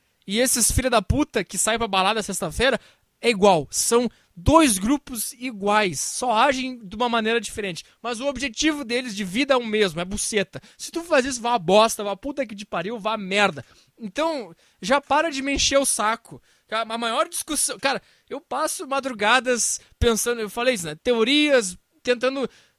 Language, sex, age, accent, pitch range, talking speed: English, male, 20-39, Brazilian, 215-270 Hz, 180 wpm